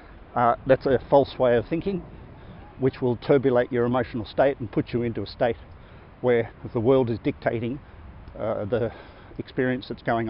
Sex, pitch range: male, 110-130 Hz